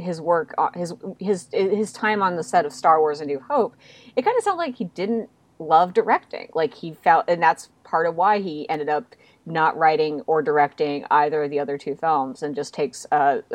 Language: English